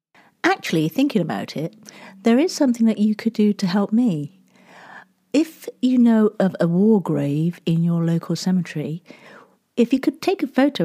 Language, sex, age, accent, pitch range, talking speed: English, female, 40-59, British, 170-230 Hz, 170 wpm